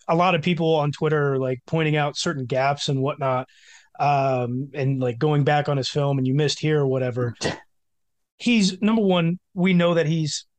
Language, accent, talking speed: English, American, 200 wpm